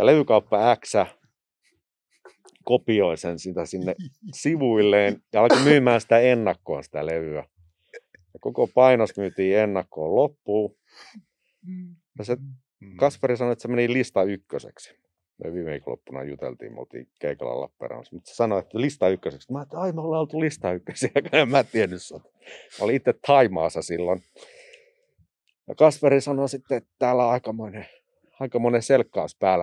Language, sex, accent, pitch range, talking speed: Finnish, male, native, 90-140 Hz, 130 wpm